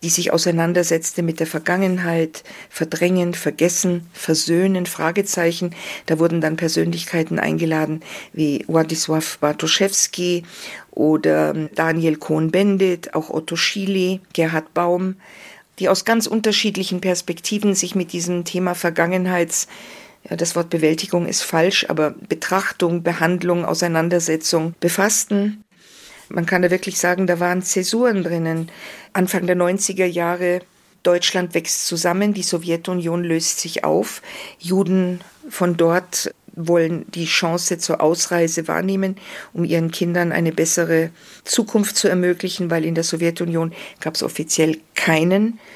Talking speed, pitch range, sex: 120 wpm, 165-185 Hz, female